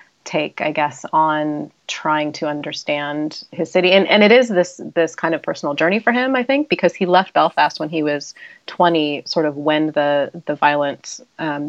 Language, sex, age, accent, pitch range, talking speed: English, female, 30-49, American, 150-180 Hz, 195 wpm